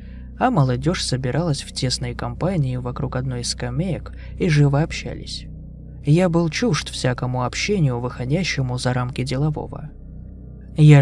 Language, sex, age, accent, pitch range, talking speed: Russian, male, 20-39, native, 125-155 Hz, 125 wpm